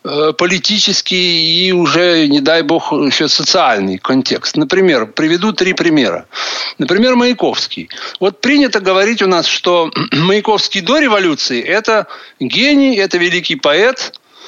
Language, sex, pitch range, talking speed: Russian, male, 155-235 Hz, 120 wpm